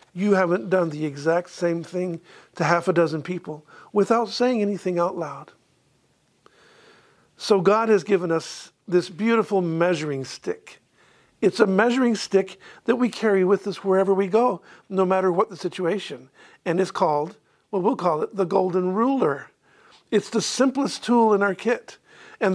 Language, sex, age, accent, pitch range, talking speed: English, male, 50-69, American, 170-210 Hz, 160 wpm